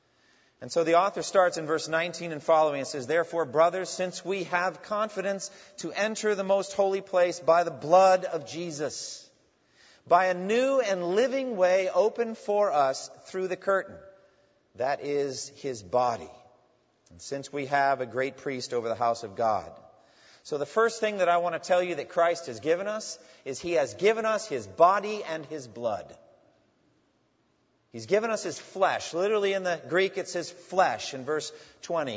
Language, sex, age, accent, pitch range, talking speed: English, male, 40-59, American, 145-195 Hz, 180 wpm